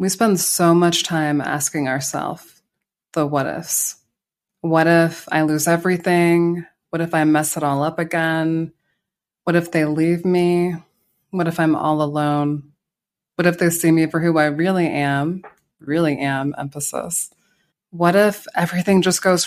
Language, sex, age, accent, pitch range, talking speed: English, female, 20-39, American, 155-180 Hz, 155 wpm